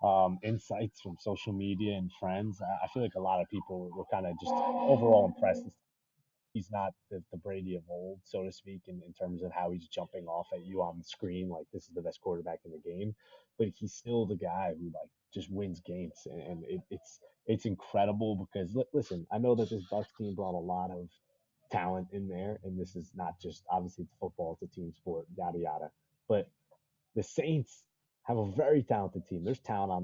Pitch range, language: 90-110 Hz, English